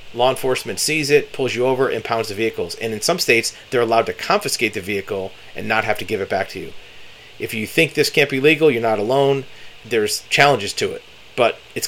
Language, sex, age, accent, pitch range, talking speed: English, male, 40-59, American, 105-140 Hz, 230 wpm